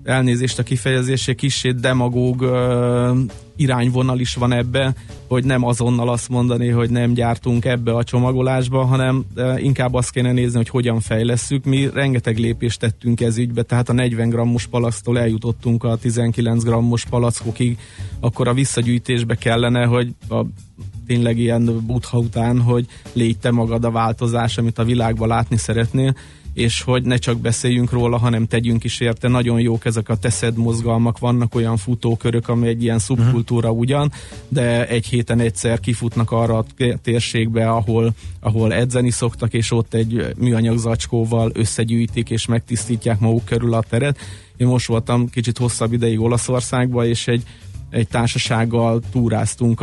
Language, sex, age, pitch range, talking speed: Hungarian, male, 30-49, 115-125 Hz, 150 wpm